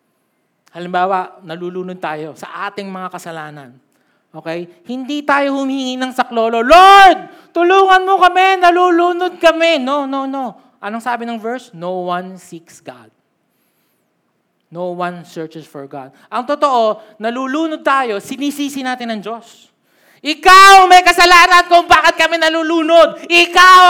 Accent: native